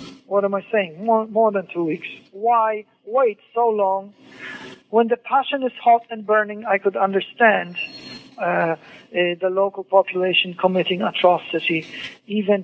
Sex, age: male, 50-69